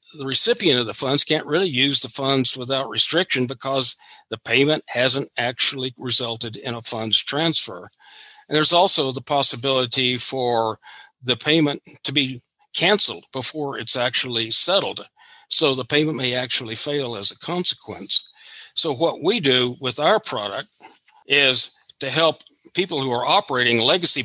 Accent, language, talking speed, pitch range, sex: American, English, 150 wpm, 125-155 Hz, male